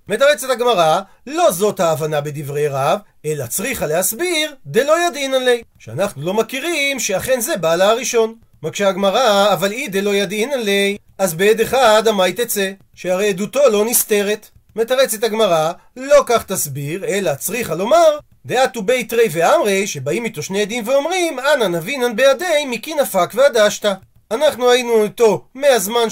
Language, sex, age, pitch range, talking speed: Hebrew, male, 40-59, 195-260 Hz, 145 wpm